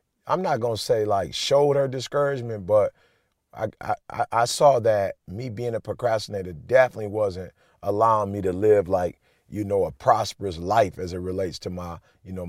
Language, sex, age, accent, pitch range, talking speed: English, male, 30-49, American, 95-125 Hz, 180 wpm